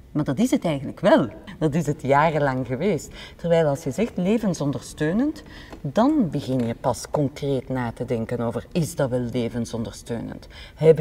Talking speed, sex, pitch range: 165 wpm, female, 135-175 Hz